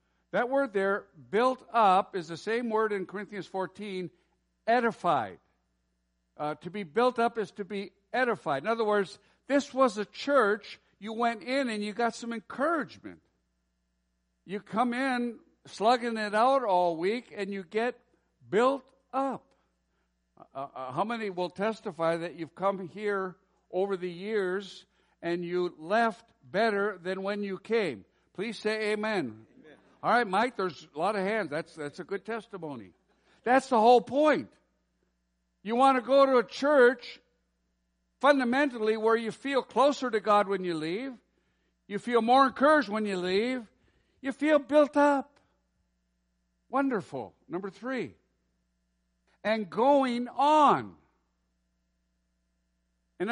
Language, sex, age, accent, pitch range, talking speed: English, male, 60-79, American, 150-240 Hz, 140 wpm